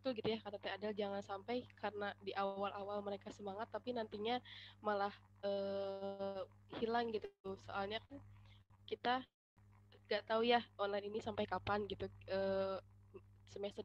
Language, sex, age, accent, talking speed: Indonesian, female, 20-39, native, 140 wpm